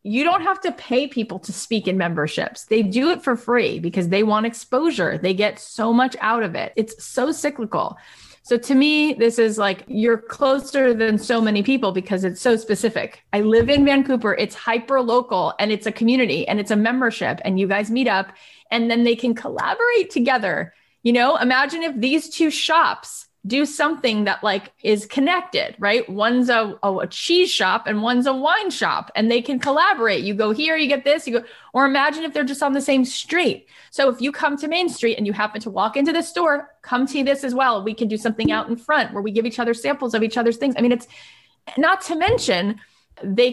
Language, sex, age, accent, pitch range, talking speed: English, female, 30-49, American, 225-295 Hz, 220 wpm